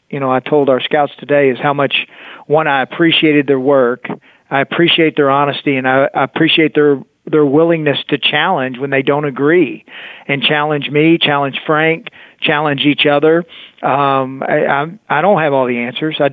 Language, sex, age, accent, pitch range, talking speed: English, male, 40-59, American, 140-155 Hz, 180 wpm